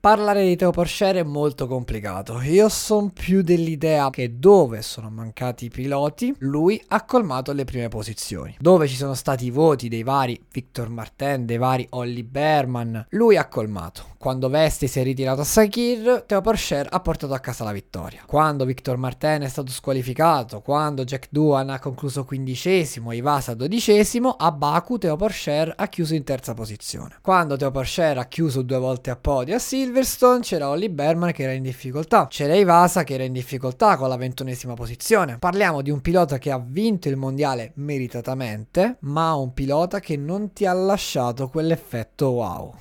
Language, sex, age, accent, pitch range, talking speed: Italian, male, 20-39, native, 125-175 Hz, 170 wpm